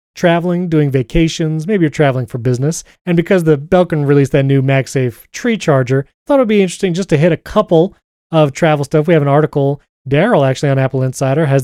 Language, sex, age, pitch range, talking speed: English, male, 30-49, 135-175 Hz, 205 wpm